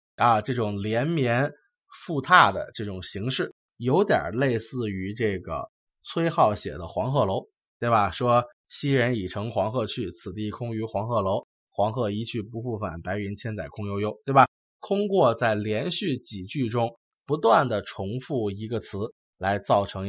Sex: male